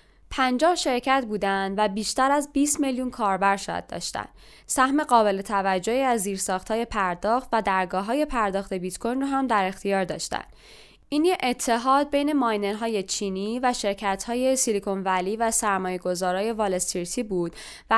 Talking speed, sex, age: 145 wpm, female, 10-29